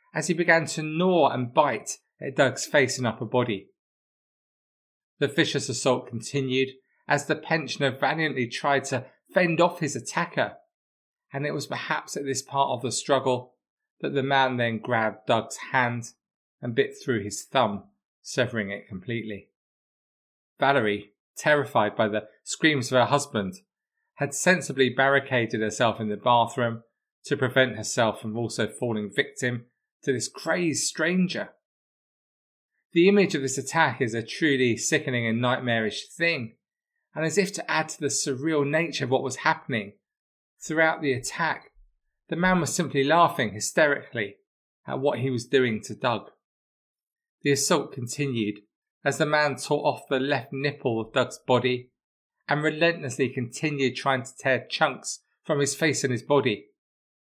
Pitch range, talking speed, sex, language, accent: 120-155 Hz, 150 wpm, male, English, British